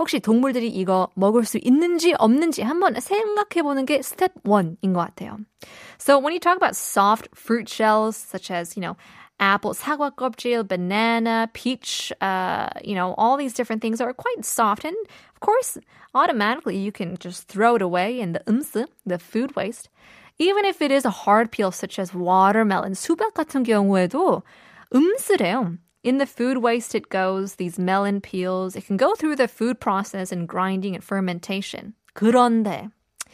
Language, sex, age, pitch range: Korean, female, 20-39, 195-255 Hz